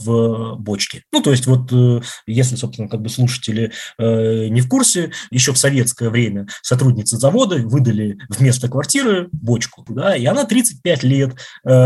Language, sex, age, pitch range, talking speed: Russian, male, 20-39, 115-135 Hz, 150 wpm